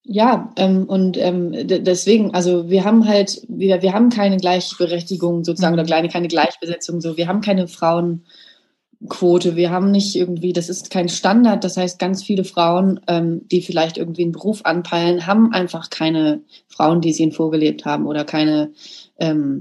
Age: 20-39